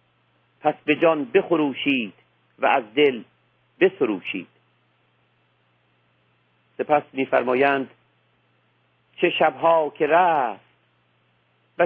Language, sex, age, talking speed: Persian, male, 50-69, 75 wpm